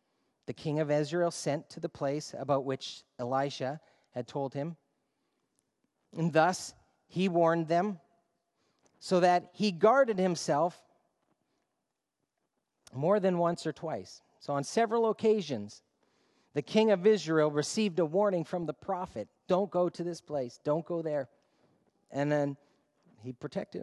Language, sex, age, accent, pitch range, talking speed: English, male, 40-59, American, 140-195 Hz, 140 wpm